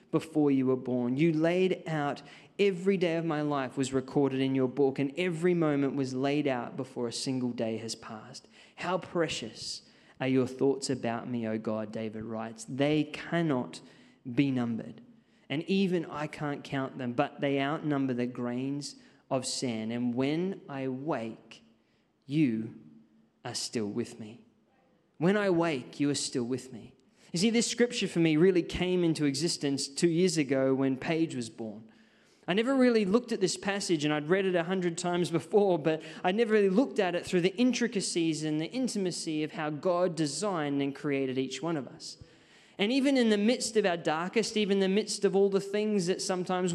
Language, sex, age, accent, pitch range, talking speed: English, male, 20-39, Australian, 135-185 Hz, 190 wpm